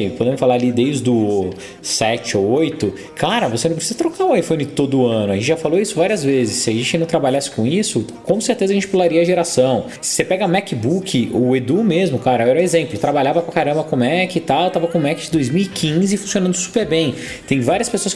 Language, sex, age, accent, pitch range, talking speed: Portuguese, male, 20-39, Brazilian, 135-195 Hz, 230 wpm